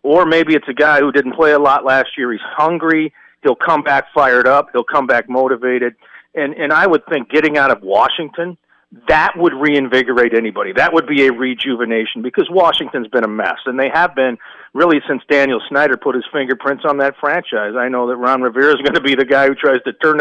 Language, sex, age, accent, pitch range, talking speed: English, male, 40-59, American, 130-170 Hz, 225 wpm